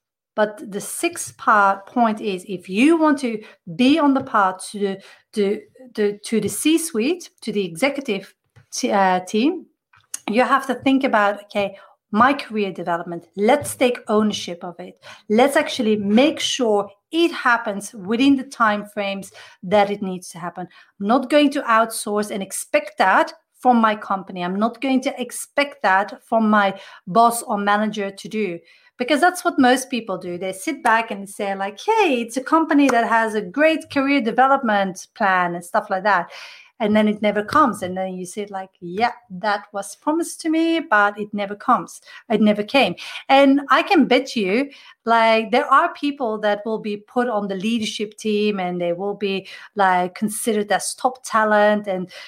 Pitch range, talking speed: 200-265 Hz, 180 wpm